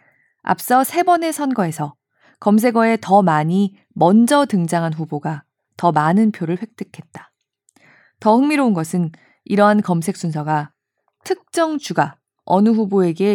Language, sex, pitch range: Korean, female, 165-240 Hz